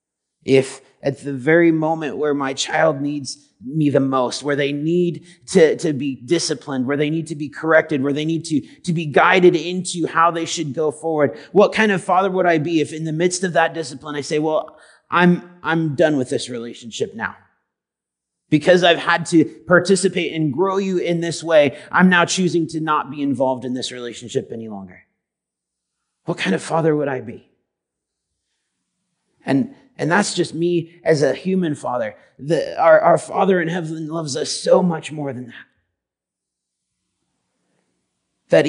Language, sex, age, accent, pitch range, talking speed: English, male, 30-49, American, 140-180 Hz, 175 wpm